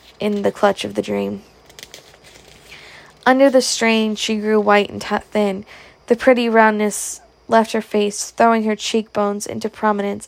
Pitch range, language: 200-225 Hz, English